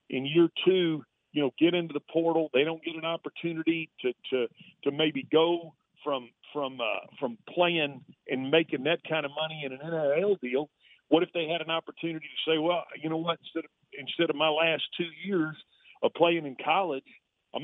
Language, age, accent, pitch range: English, 50-69, American, 145-165 Hz